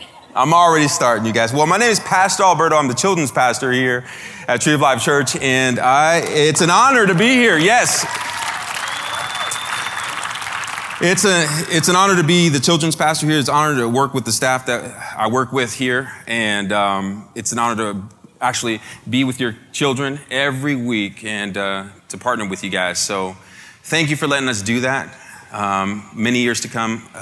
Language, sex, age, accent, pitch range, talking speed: English, male, 30-49, American, 100-135 Hz, 190 wpm